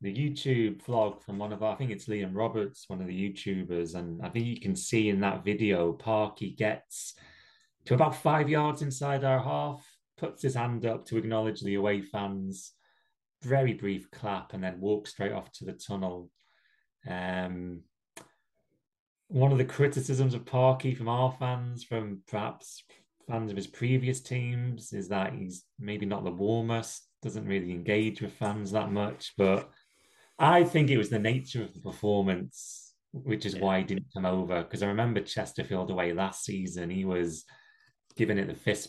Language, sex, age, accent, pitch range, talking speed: English, male, 20-39, British, 95-120 Hz, 175 wpm